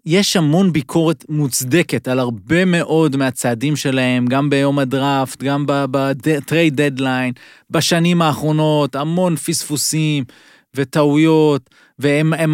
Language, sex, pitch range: Hebrew, male, 135-180 Hz